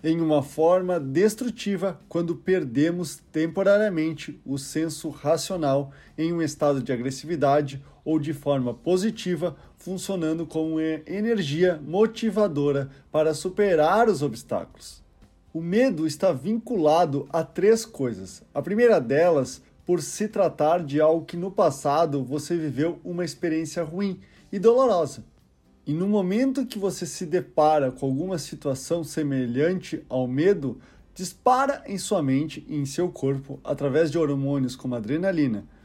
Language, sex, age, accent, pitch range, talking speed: Portuguese, male, 20-39, Brazilian, 145-190 Hz, 130 wpm